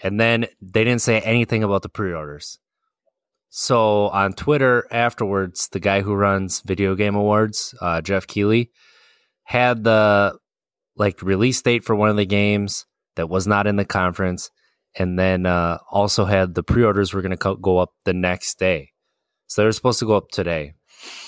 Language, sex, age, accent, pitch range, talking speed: English, male, 20-39, American, 95-110 Hz, 180 wpm